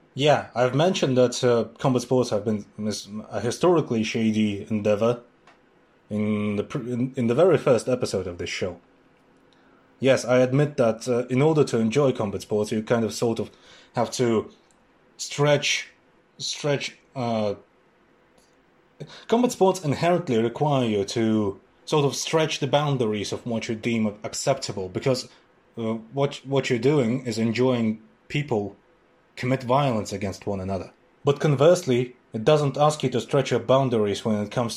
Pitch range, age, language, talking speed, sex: 110-135 Hz, 20-39, English, 150 wpm, male